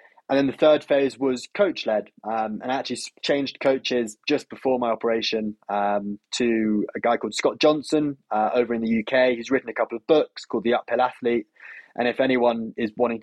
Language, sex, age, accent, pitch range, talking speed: English, male, 20-39, British, 115-135 Hz, 195 wpm